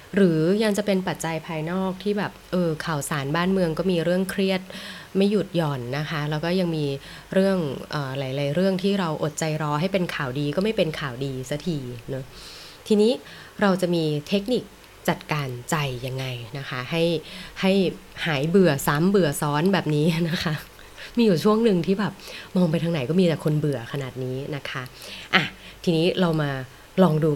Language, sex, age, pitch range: Thai, female, 20-39, 145-185 Hz